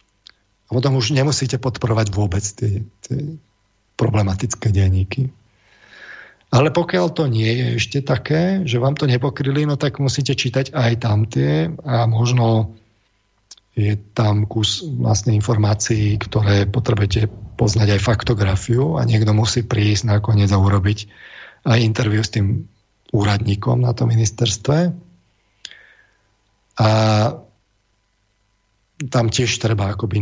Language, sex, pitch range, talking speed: Slovak, male, 100-125 Hz, 120 wpm